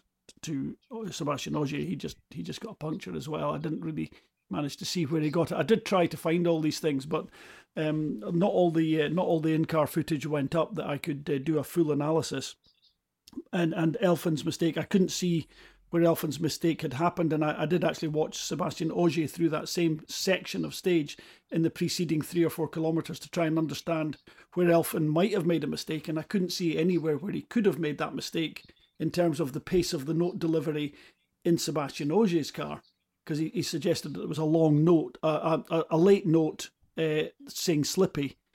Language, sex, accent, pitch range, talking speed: English, male, British, 155-175 Hz, 215 wpm